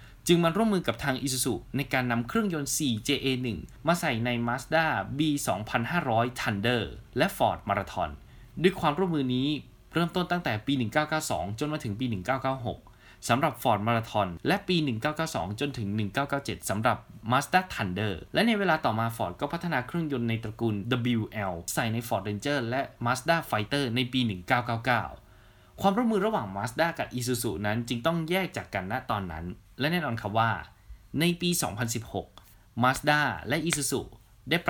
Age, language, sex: 20-39, Thai, male